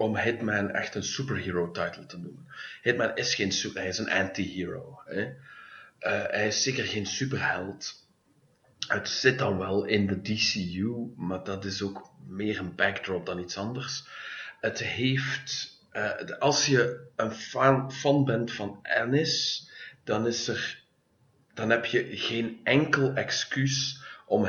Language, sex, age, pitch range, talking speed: English, male, 40-59, 95-125 Hz, 145 wpm